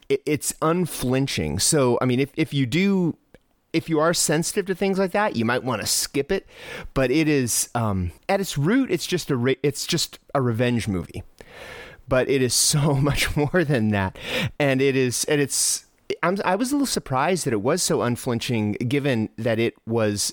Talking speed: 200 wpm